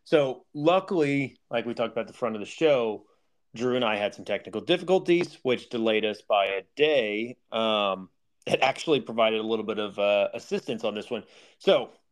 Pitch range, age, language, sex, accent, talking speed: 110-155 Hz, 30-49, English, male, American, 195 wpm